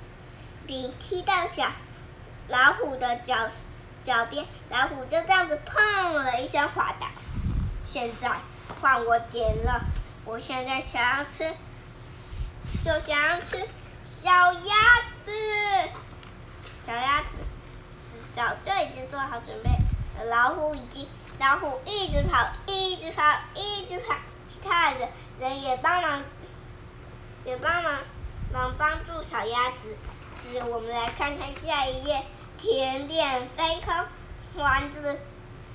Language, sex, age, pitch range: Chinese, male, 20-39, 250-355 Hz